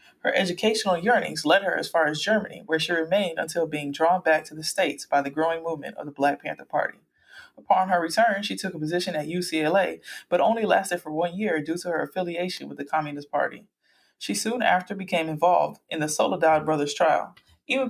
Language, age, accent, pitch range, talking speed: English, 20-39, American, 155-200 Hz, 210 wpm